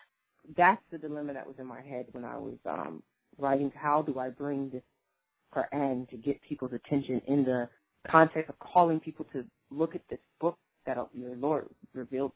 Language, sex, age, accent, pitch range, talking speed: English, female, 30-49, American, 135-175 Hz, 185 wpm